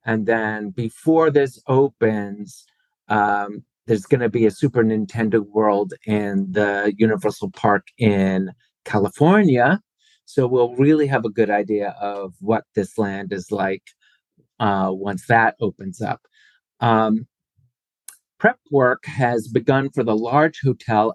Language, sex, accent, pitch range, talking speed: English, male, American, 105-140 Hz, 135 wpm